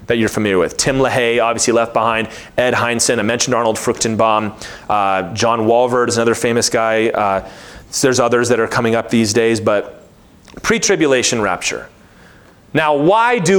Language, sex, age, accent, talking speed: English, male, 30-49, American, 165 wpm